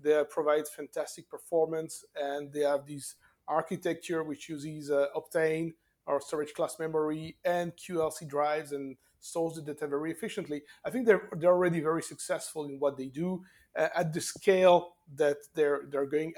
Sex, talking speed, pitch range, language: male, 165 wpm, 150-175 Hz, English